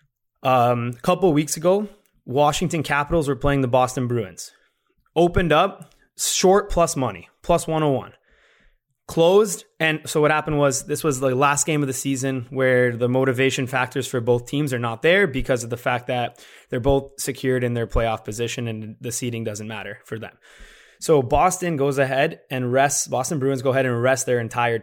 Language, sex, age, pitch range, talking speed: English, male, 20-39, 125-155 Hz, 185 wpm